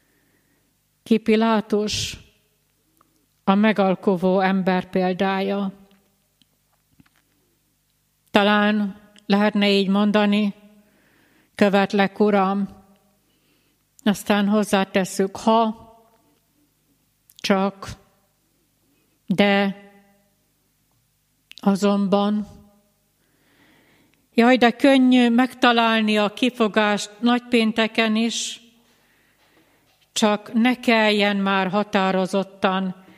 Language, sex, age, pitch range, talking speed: Hungarian, female, 60-79, 195-220 Hz, 55 wpm